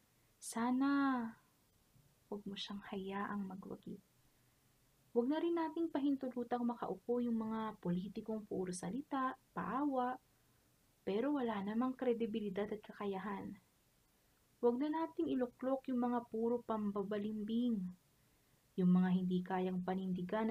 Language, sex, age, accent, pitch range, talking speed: Filipino, female, 20-39, native, 195-245 Hz, 110 wpm